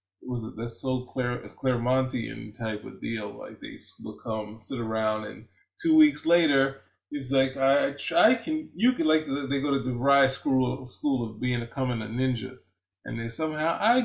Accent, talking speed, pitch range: American, 190 wpm, 115-185 Hz